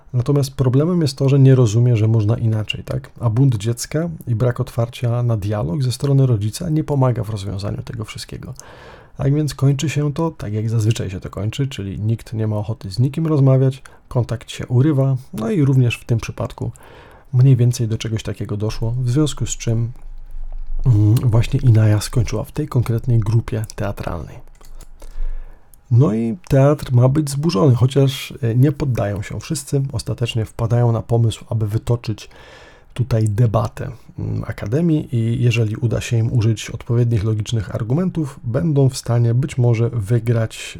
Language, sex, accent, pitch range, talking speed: Polish, male, native, 110-135 Hz, 160 wpm